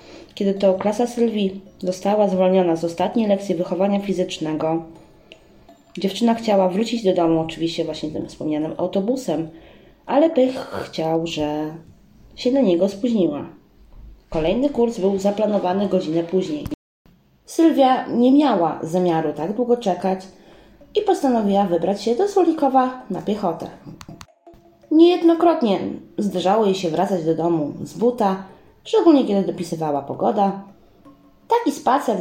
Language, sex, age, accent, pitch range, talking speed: Polish, female, 20-39, native, 170-235 Hz, 120 wpm